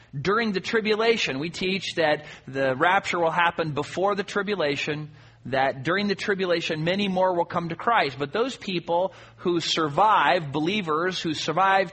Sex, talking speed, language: male, 155 wpm, English